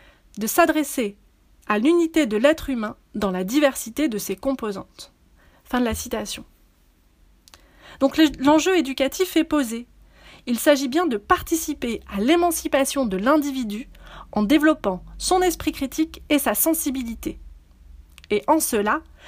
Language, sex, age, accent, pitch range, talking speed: French, female, 30-49, French, 220-310 Hz, 130 wpm